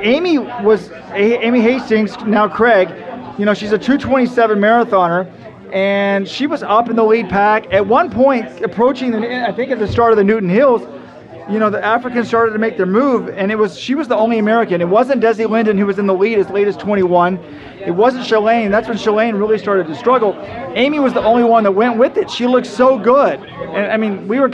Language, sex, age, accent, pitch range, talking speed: English, male, 30-49, American, 200-235 Hz, 225 wpm